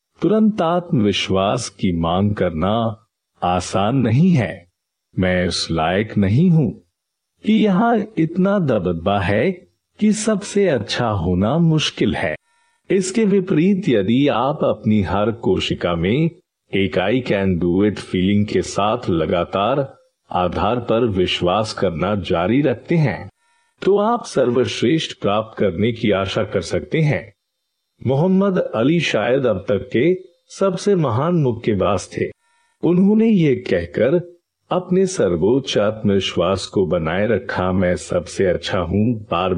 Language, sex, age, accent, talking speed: Hindi, male, 50-69, native, 125 wpm